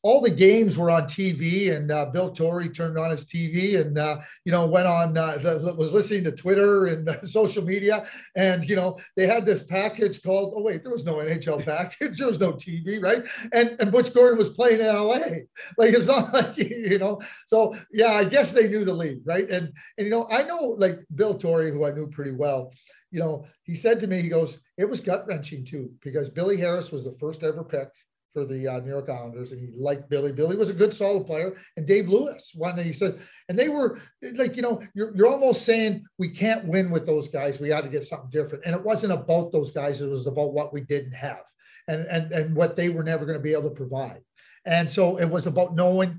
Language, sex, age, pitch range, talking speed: English, male, 40-59, 155-205 Hz, 240 wpm